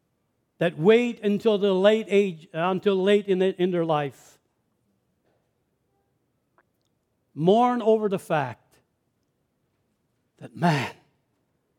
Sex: male